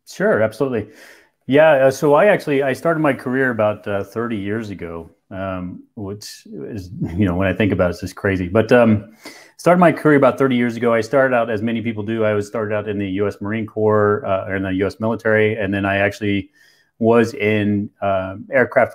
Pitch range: 100-115 Hz